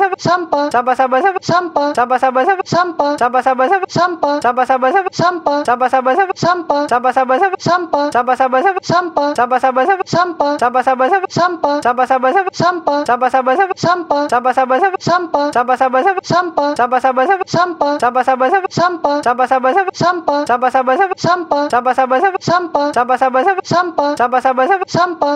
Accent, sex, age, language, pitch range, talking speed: native, female, 20-39, Indonesian, 260-350 Hz, 200 wpm